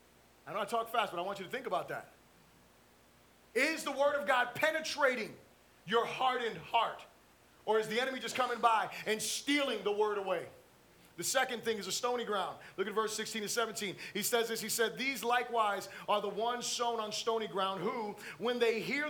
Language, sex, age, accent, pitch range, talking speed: English, male, 30-49, American, 210-265 Hz, 205 wpm